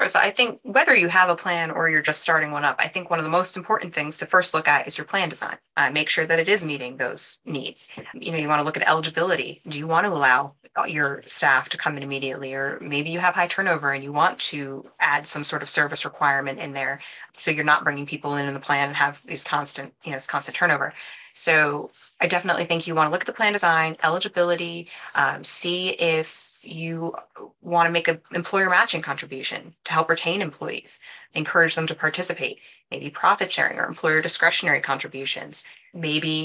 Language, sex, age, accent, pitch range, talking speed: English, female, 20-39, American, 150-175 Hz, 220 wpm